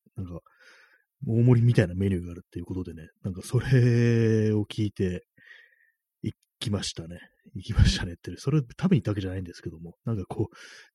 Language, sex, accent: Japanese, male, native